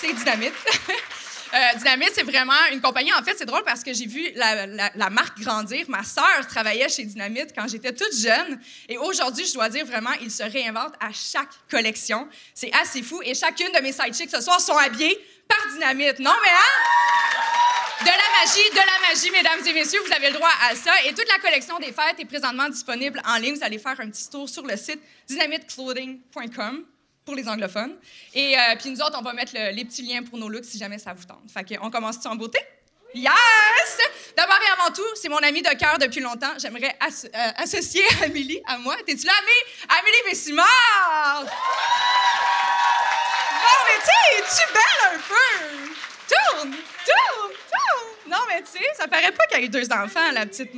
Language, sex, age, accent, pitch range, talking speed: French, female, 20-39, Canadian, 245-340 Hz, 210 wpm